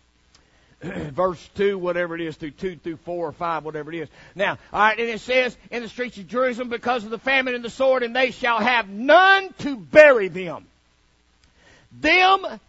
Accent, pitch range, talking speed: American, 200-275 Hz, 195 wpm